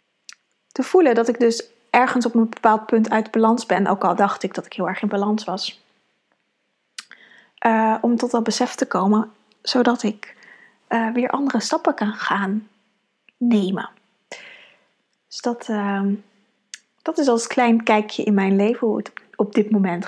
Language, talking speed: Dutch, 165 wpm